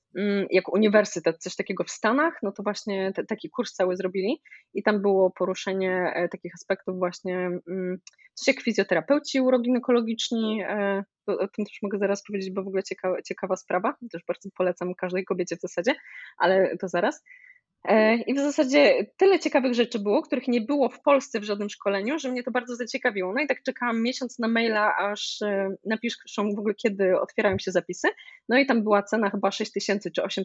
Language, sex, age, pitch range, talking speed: Polish, female, 20-39, 195-255 Hz, 185 wpm